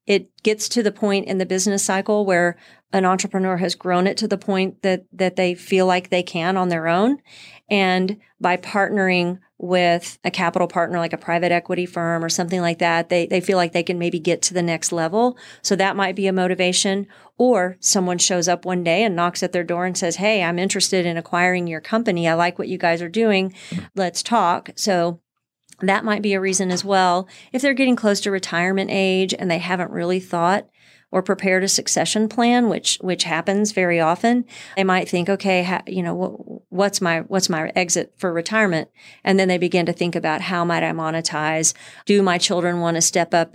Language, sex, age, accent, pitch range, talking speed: English, female, 40-59, American, 175-195 Hz, 210 wpm